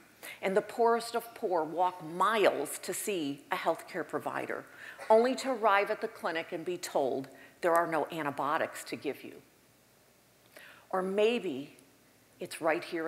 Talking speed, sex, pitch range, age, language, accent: 155 wpm, female, 160-220 Hz, 50-69, English, American